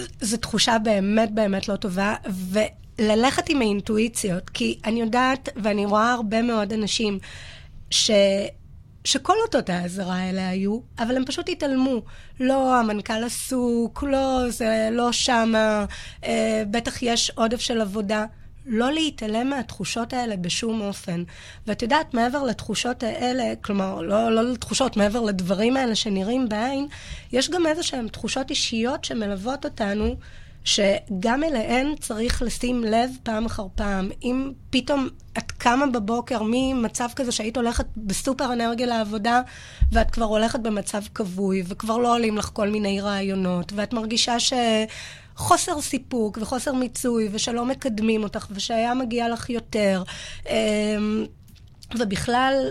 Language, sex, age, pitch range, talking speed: Hebrew, female, 20-39, 215-255 Hz, 130 wpm